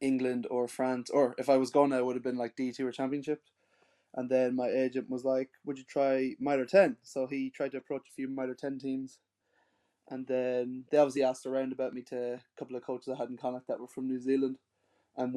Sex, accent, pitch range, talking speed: male, Irish, 125-135 Hz, 235 wpm